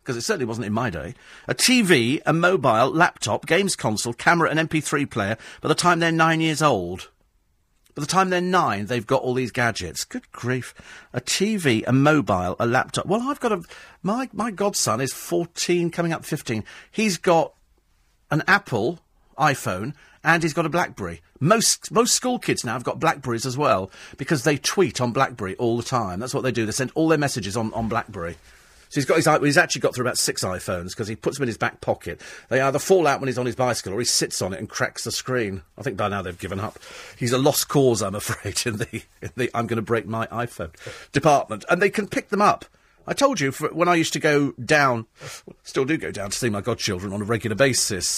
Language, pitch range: English, 115-170 Hz